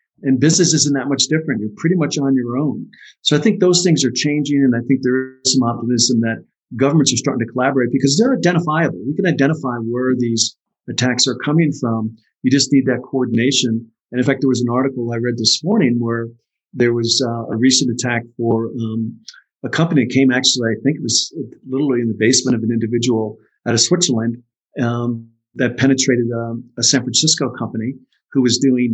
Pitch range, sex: 115-135 Hz, male